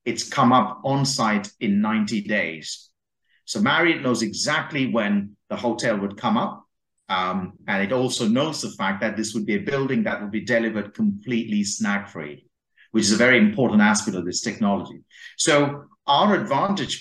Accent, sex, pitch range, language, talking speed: British, male, 100-140 Hz, English, 175 wpm